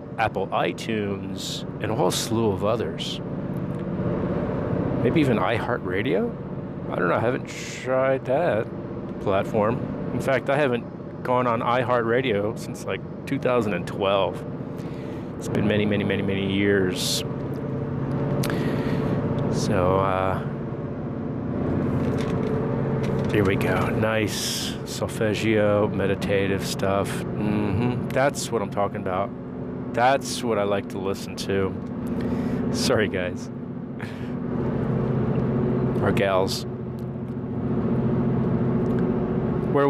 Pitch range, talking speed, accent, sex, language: 105-135 Hz, 95 wpm, American, male, English